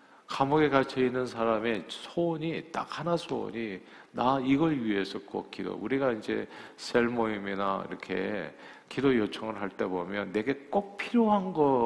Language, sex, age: Korean, male, 50-69